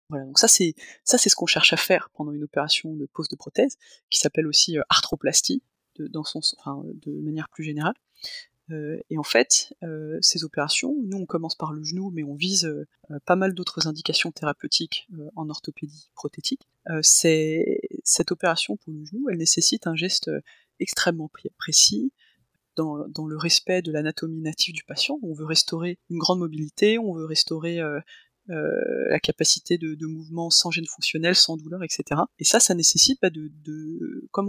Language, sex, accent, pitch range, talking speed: French, female, French, 155-185 Hz, 190 wpm